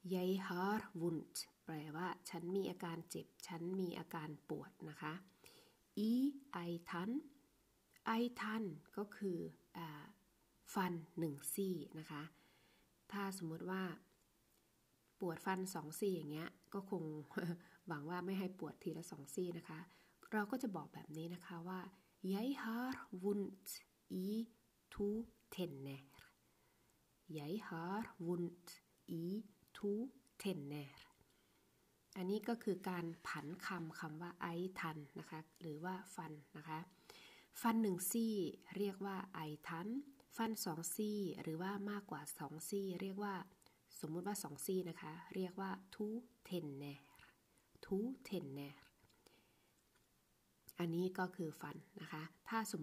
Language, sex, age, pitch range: Thai, female, 20-39, 165-205 Hz